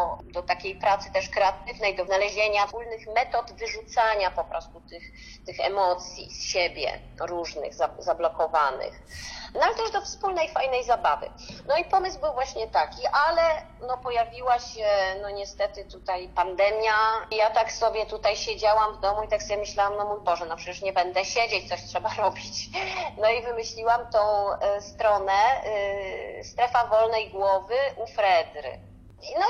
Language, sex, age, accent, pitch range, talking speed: Polish, female, 30-49, native, 180-230 Hz, 155 wpm